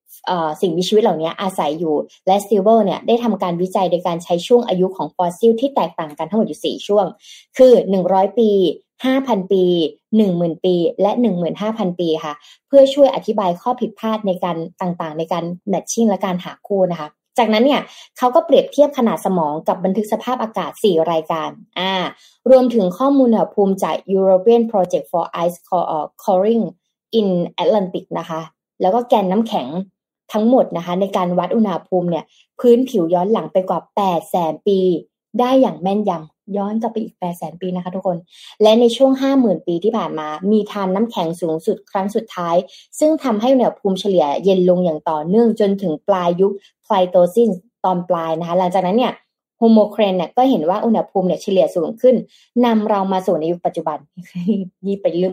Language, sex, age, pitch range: Thai, female, 20-39, 175-225 Hz